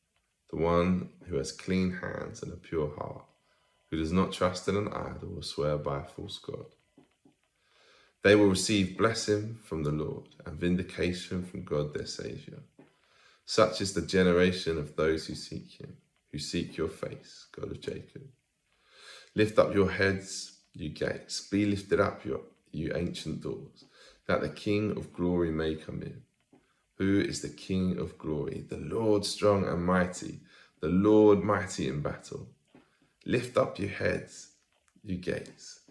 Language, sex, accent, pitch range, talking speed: English, male, British, 85-100 Hz, 155 wpm